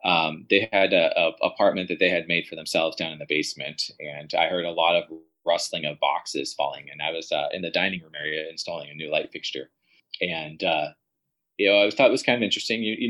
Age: 20-39